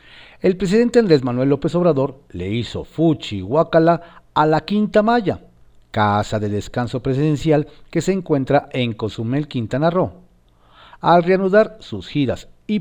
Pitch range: 105-160 Hz